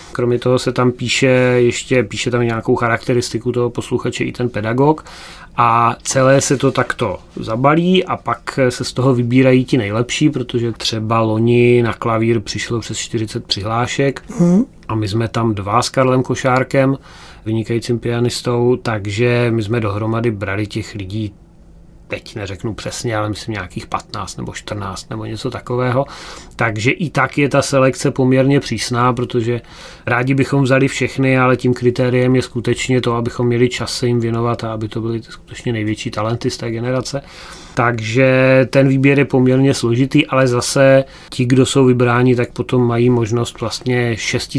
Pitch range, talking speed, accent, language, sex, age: 115-130 Hz, 160 wpm, native, Czech, male, 30-49